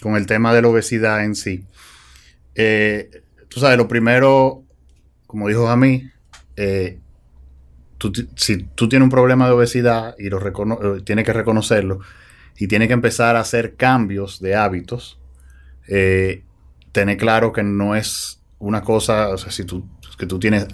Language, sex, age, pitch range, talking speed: Spanish, male, 30-49, 95-115 Hz, 155 wpm